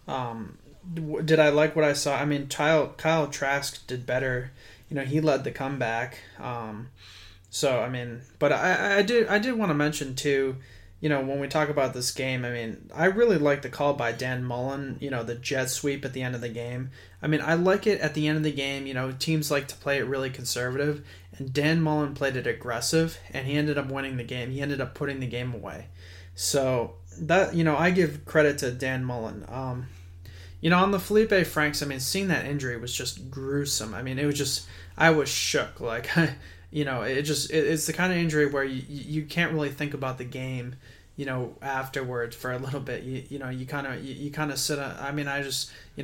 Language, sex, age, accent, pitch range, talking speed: English, male, 20-39, American, 125-145 Hz, 230 wpm